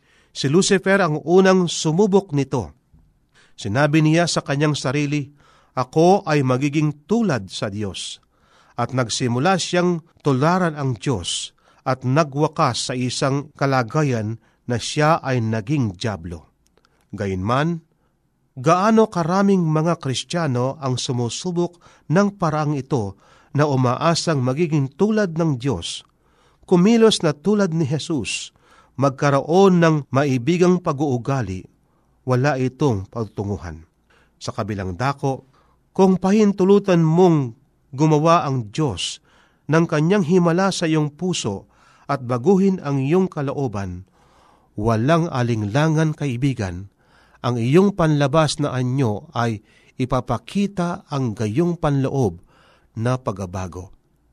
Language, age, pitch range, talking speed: Filipino, 40-59, 125-170 Hz, 105 wpm